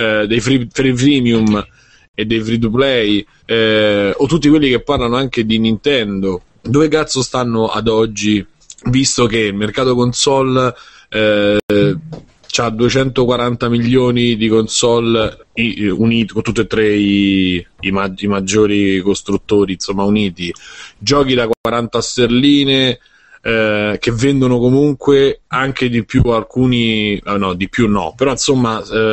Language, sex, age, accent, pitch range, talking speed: Italian, male, 30-49, native, 105-125 Hz, 140 wpm